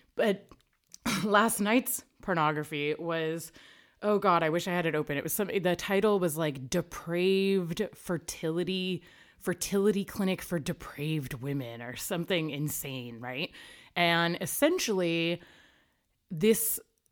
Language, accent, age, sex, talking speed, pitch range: English, American, 20-39, female, 120 wpm, 145-190 Hz